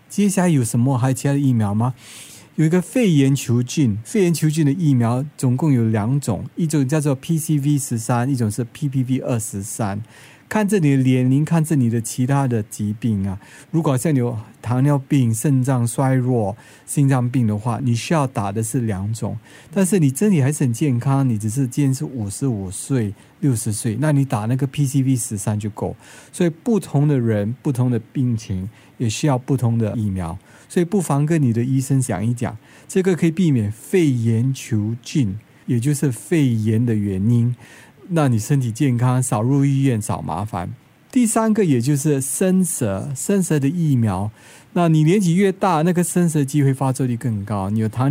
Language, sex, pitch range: Chinese, male, 115-150 Hz